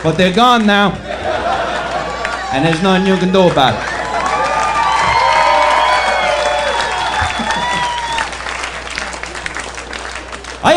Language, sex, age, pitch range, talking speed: English, male, 40-59, 180-240 Hz, 70 wpm